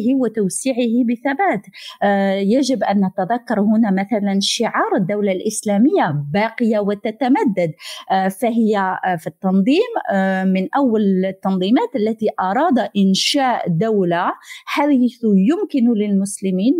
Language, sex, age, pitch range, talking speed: Arabic, female, 30-49, 190-240 Hz, 105 wpm